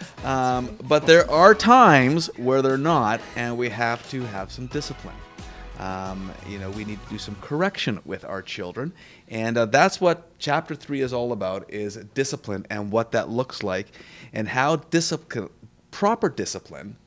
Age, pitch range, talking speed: 30-49, 105-145 Hz, 165 wpm